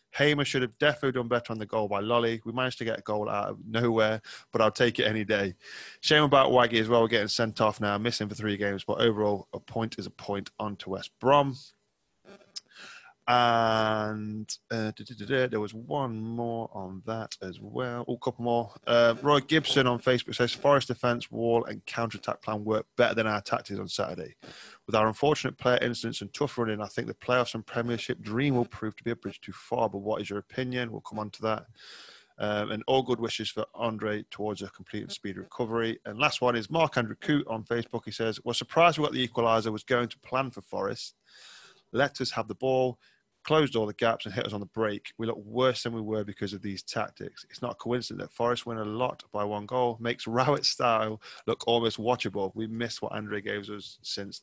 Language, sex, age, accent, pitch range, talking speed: English, male, 20-39, British, 110-130 Hz, 220 wpm